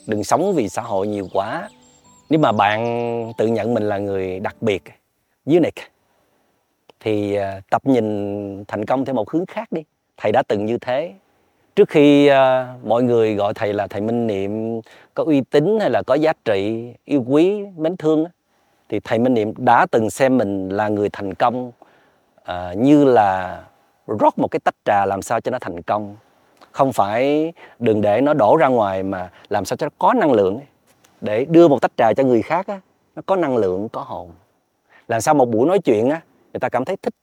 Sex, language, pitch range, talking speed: male, Vietnamese, 105-145 Hz, 195 wpm